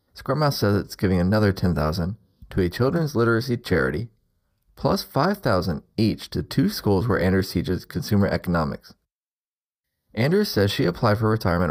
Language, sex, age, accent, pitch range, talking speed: English, male, 30-49, American, 90-115 Hz, 145 wpm